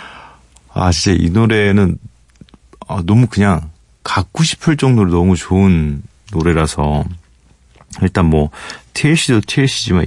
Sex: male